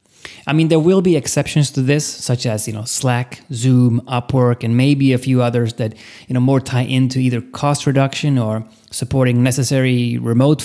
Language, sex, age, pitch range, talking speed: English, male, 30-49, 115-135 Hz, 185 wpm